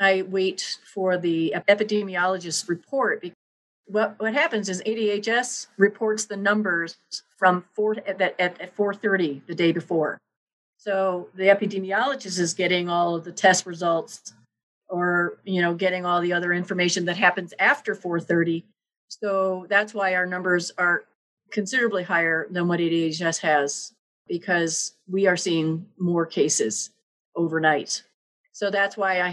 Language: English